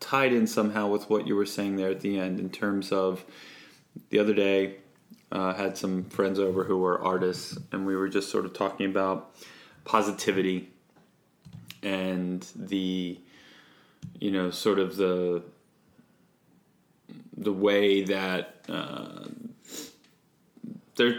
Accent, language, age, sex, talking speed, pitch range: American, English, 20-39, male, 135 wpm, 95-115 Hz